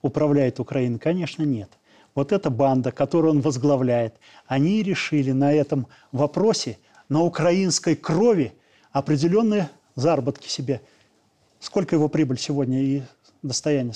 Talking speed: 115 wpm